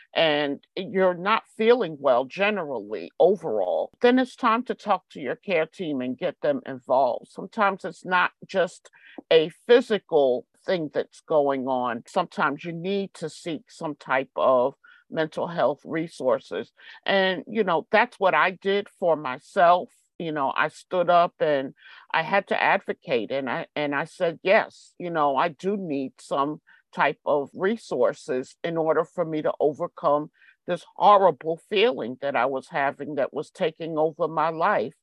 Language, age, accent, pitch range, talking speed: English, 50-69, American, 145-195 Hz, 160 wpm